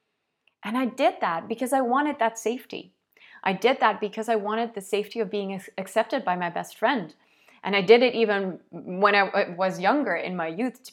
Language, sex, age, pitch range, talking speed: English, female, 20-39, 180-230 Hz, 205 wpm